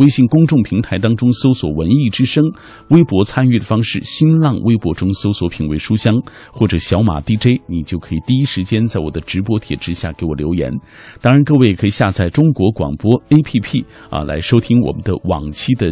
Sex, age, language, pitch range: male, 50-69, Chinese, 90-120 Hz